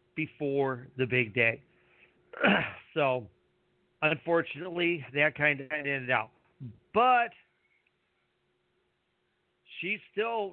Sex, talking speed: male, 75 wpm